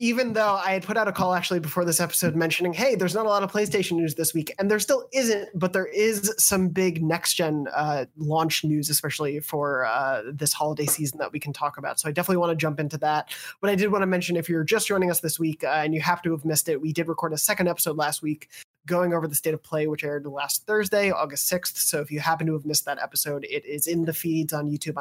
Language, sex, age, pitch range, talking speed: English, male, 20-39, 150-185 Hz, 265 wpm